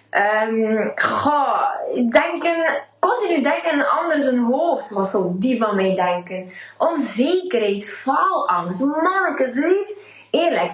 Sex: female